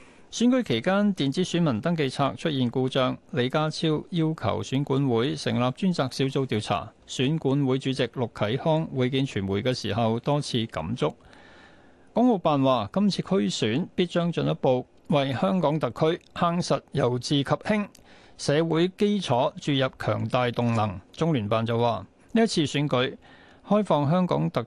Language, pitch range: Chinese, 125-160 Hz